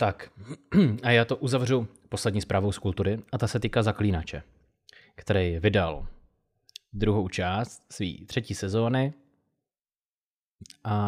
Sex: male